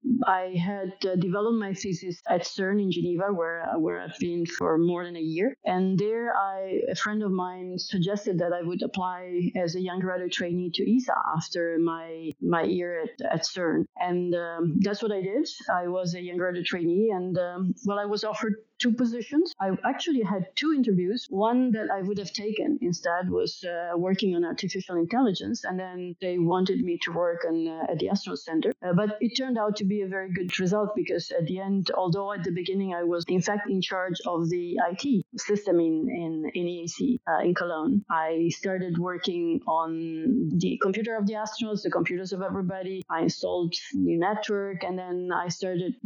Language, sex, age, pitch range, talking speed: English, female, 30-49, 175-205 Hz, 200 wpm